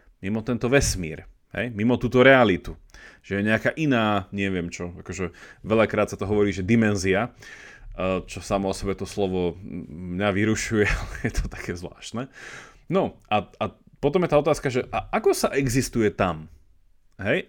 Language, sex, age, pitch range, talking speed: Slovak, male, 30-49, 95-125 Hz, 160 wpm